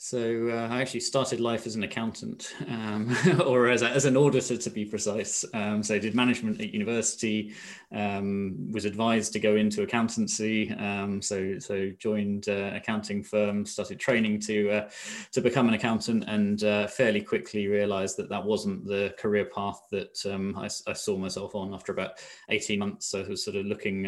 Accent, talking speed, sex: British, 190 wpm, male